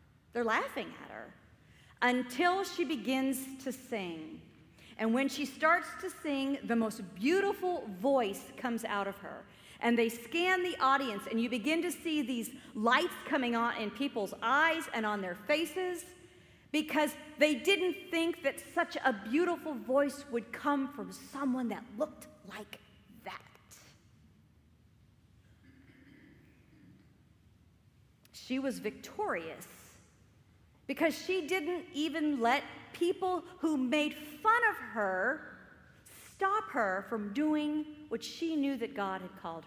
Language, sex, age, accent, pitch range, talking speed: English, female, 40-59, American, 220-310 Hz, 130 wpm